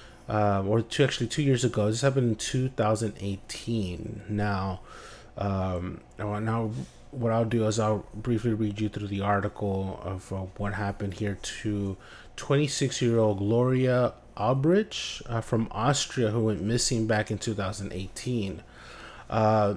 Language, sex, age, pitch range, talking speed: English, male, 30-49, 105-125 Hz, 135 wpm